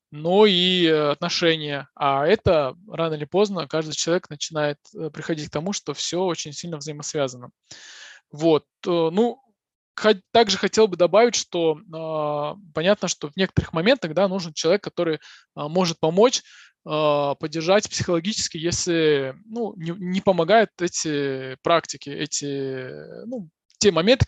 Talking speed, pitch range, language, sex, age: 120 wpm, 155-195 Hz, Russian, male, 20-39